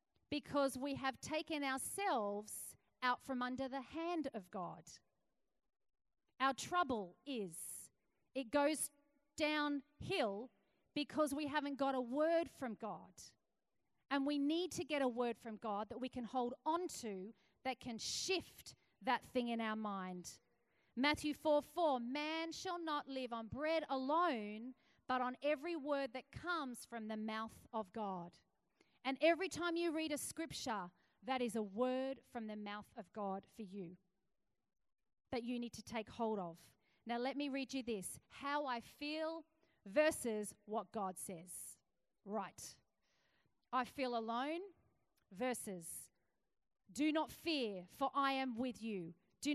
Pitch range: 220-295 Hz